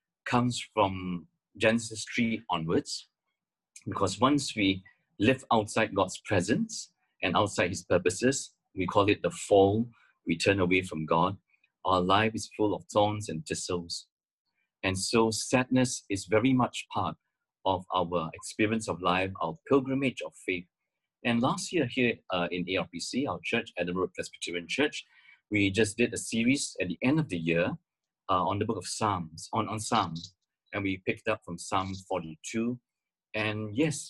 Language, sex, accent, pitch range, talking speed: English, male, Malaysian, 95-125 Hz, 160 wpm